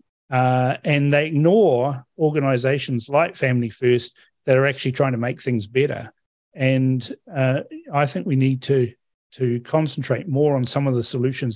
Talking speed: 160 wpm